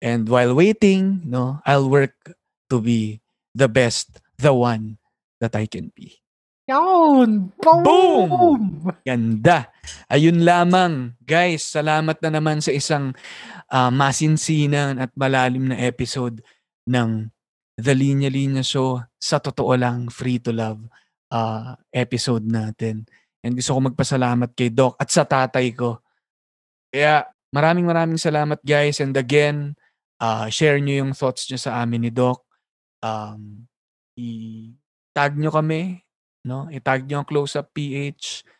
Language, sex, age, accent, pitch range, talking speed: Filipino, male, 20-39, native, 120-145 Hz, 130 wpm